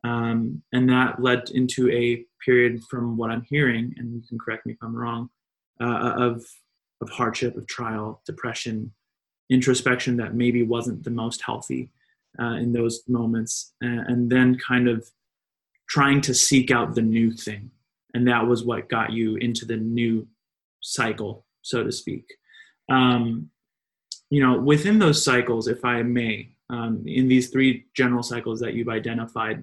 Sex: male